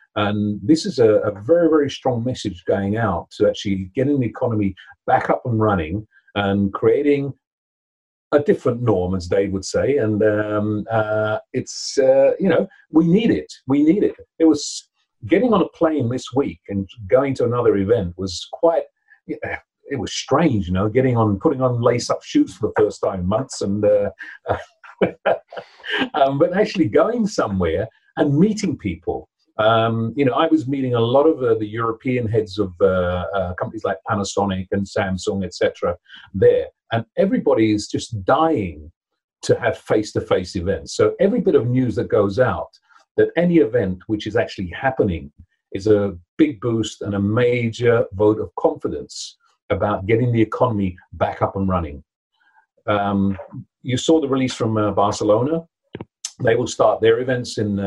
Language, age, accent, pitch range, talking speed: English, 40-59, British, 100-145 Hz, 170 wpm